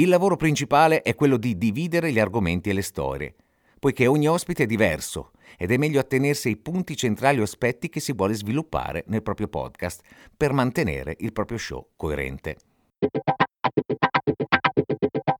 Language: Italian